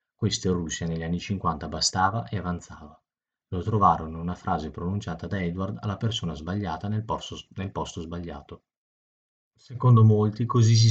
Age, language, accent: 30-49, Italian, native